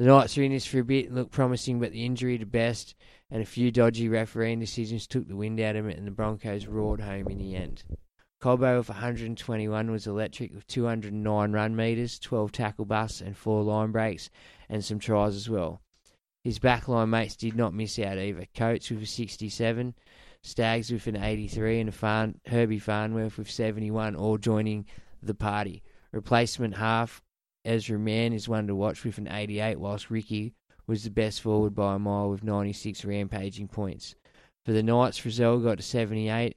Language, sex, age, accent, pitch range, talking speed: English, male, 20-39, Australian, 105-115 Hz, 190 wpm